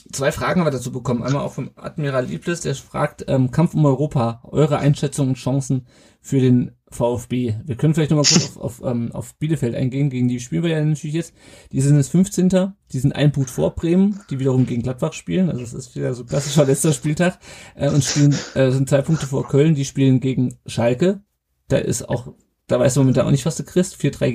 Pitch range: 130-155 Hz